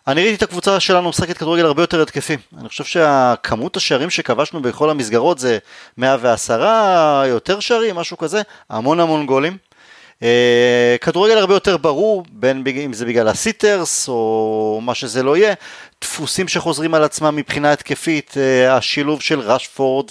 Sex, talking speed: male, 145 wpm